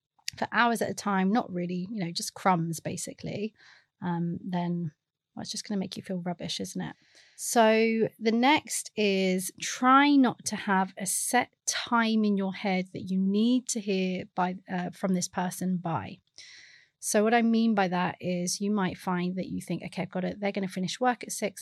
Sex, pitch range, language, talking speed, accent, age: female, 175-215 Hz, English, 205 wpm, British, 30-49